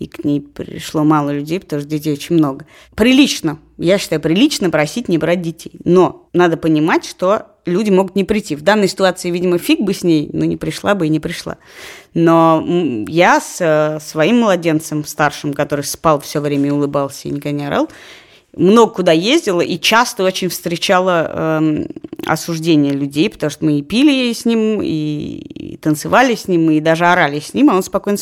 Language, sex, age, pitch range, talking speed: Russian, female, 20-39, 155-210 Hz, 185 wpm